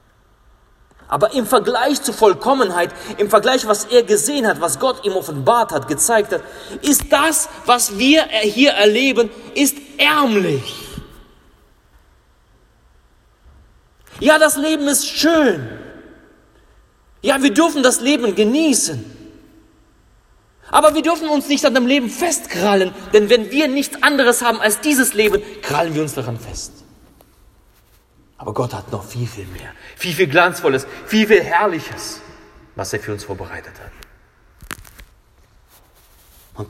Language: German